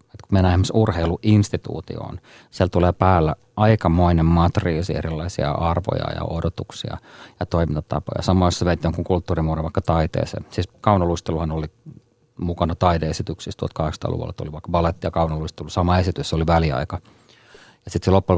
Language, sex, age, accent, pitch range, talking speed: Finnish, male, 30-49, native, 80-95 Hz, 135 wpm